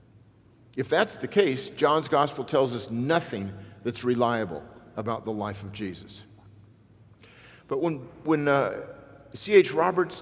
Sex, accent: male, American